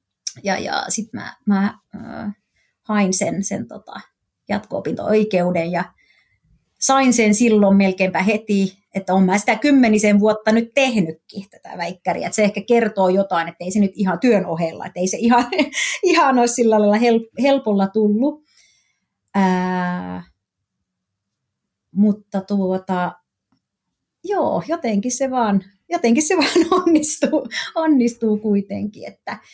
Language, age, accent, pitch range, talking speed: Finnish, 30-49, native, 190-235 Hz, 130 wpm